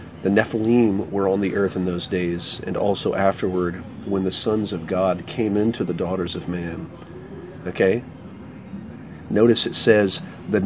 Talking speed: 160 wpm